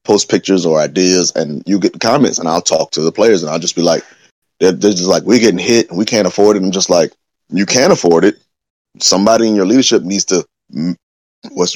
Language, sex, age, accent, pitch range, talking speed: English, male, 30-49, American, 90-110 Hz, 240 wpm